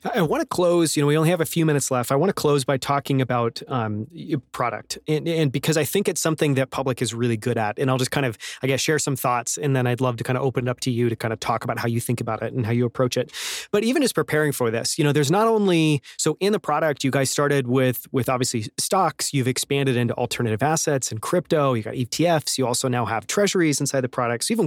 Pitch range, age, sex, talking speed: 125-155 Hz, 30-49, male, 275 wpm